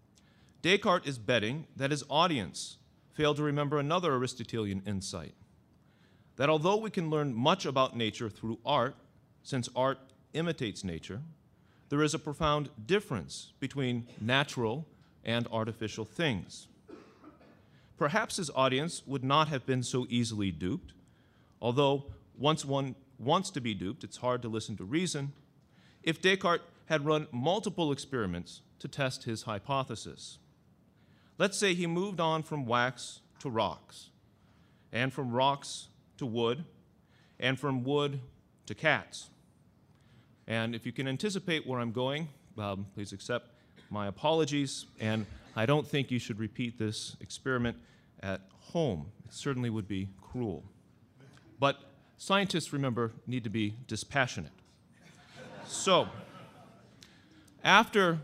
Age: 40-59